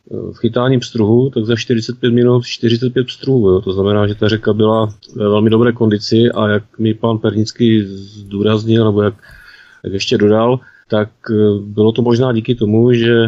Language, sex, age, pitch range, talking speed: Czech, male, 30-49, 100-115 Hz, 165 wpm